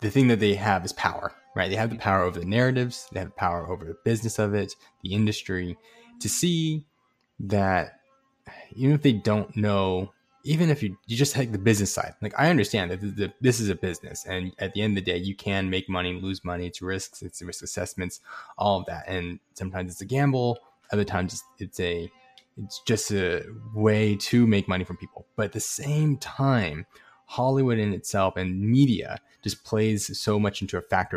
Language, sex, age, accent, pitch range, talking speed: English, male, 20-39, American, 95-120 Hz, 205 wpm